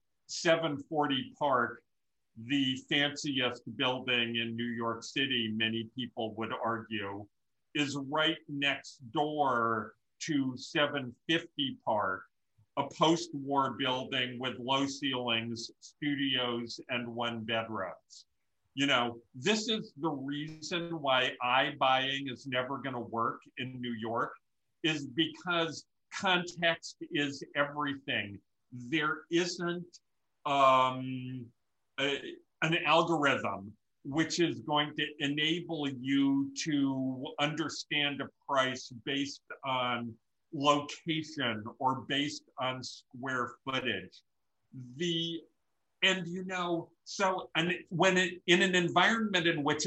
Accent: American